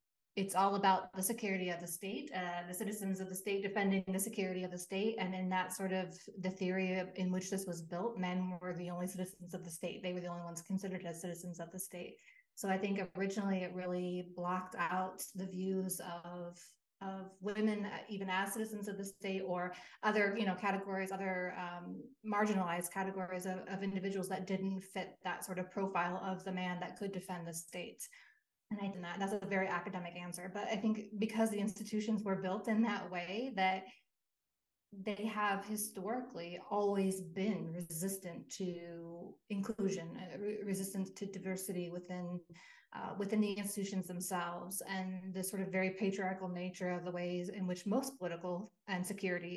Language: English